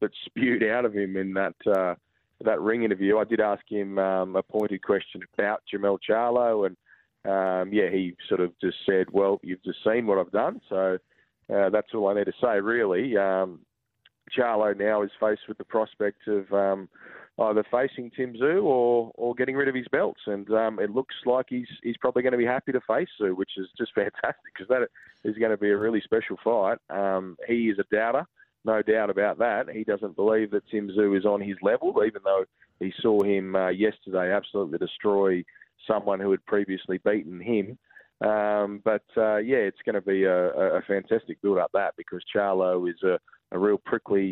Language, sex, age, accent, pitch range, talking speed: English, male, 20-39, Australian, 95-110 Hz, 205 wpm